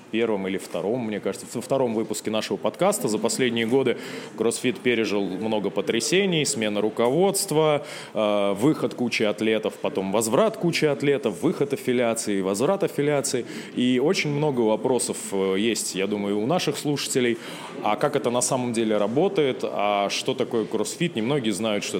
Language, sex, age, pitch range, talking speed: Russian, male, 20-39, 105-145 Hz, 150 wpm